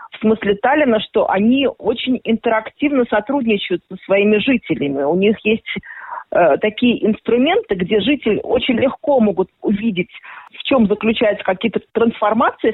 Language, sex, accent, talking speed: Russian, female, native, 130 wpm